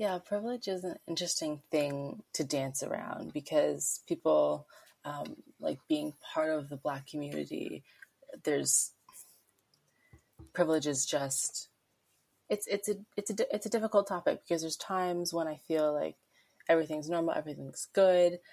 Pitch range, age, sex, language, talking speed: 140-175 Hz, 20-39, female, English, 125 wpm